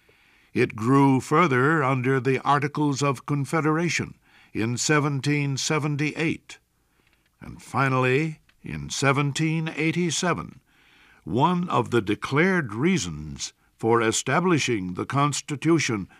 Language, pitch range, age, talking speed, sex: English, 110-155 Hz, 60-79, 85 wpm, male